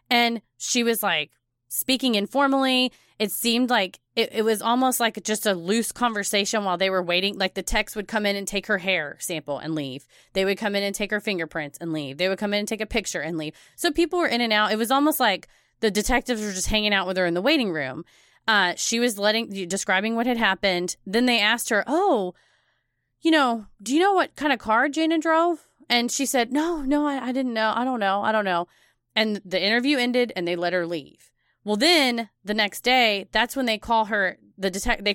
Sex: female